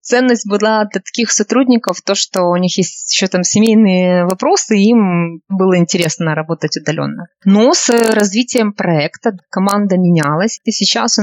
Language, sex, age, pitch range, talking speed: Russian, female, 20-39, 185-230 Hz, 150 wpm